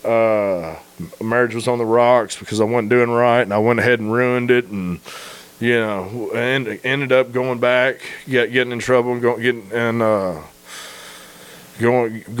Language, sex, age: English, male, 20-39